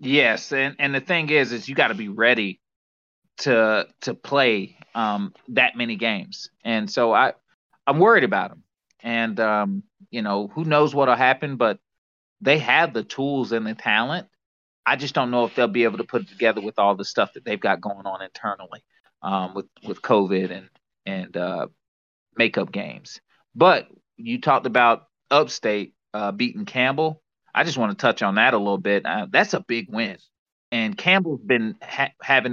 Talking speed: 185 wpm